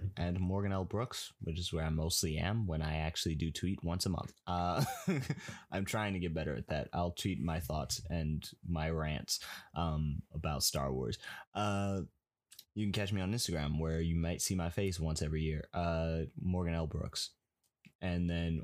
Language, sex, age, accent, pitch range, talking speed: English, male, 20-39, American, 85-105 Hz, 190 wpm